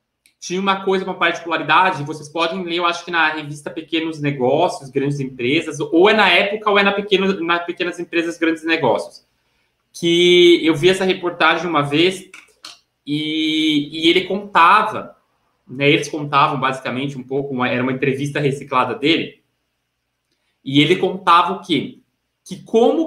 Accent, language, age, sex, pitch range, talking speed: Brazilian, Portuguese, 20-39, male, 145-190 Hz, 155 wpm